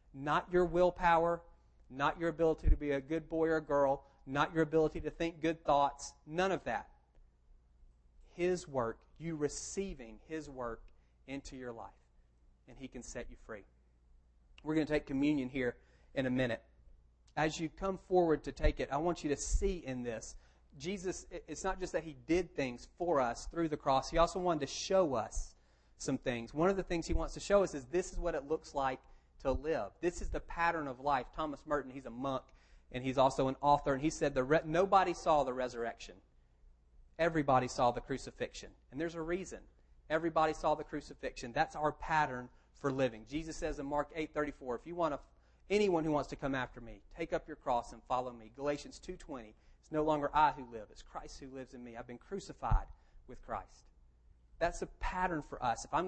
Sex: male